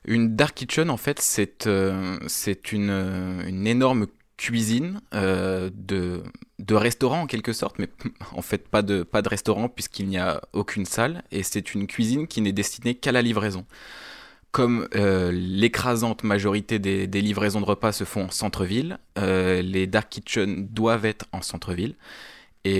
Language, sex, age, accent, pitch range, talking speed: French, male, 20-39, French, 95-115 Hz, 170 wpm